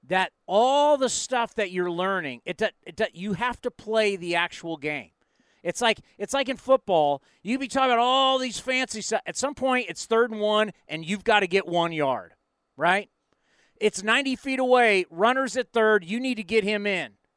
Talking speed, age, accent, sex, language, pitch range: 200 wpm, 40-59, American, male, English, 195-260 Hz